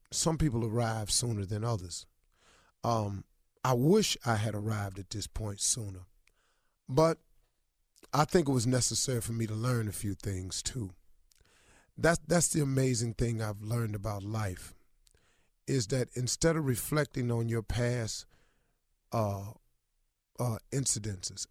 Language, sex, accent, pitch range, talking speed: English, male, American, 105-135 Hz, 140 wpm